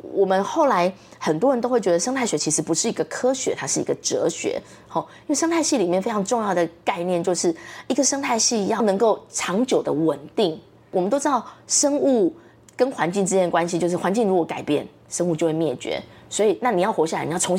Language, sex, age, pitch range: Chinese, female, 20-39, 170-245 Hz